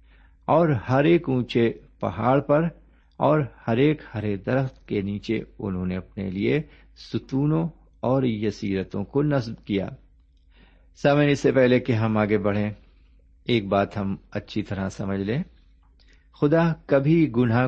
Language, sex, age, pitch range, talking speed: Urdu, male, 50-69, 90-130 Hz, 135 wpm